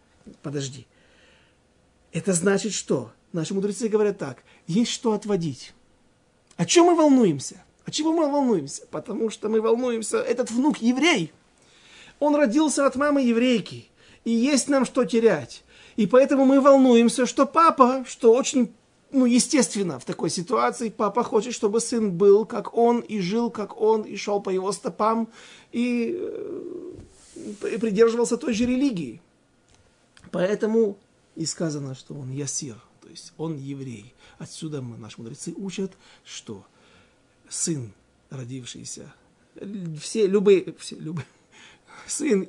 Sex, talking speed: male, 130 wpm